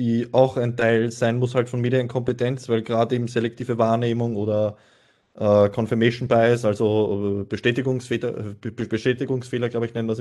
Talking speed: 155 wpm